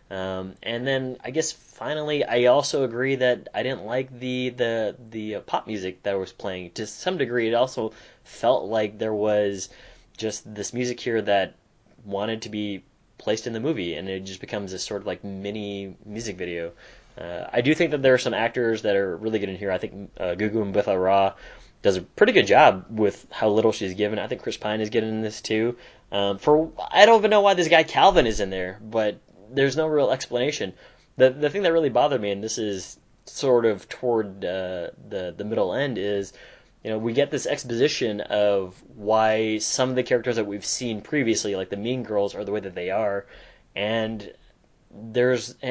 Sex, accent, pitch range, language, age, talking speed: male, American, 100-125 Hz, English, 20-39, 205 wpm